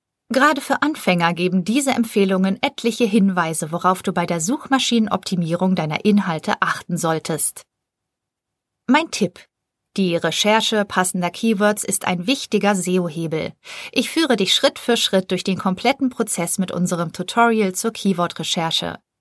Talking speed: 130 wpm